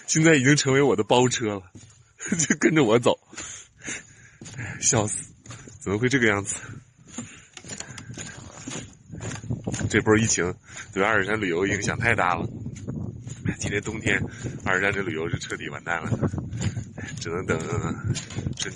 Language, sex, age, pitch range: Chinese, male, 20-39, 110-135 Hz